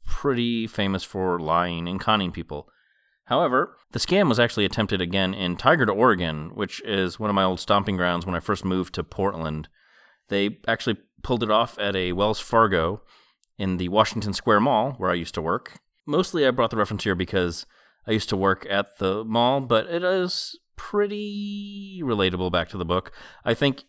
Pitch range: 90-115 Hz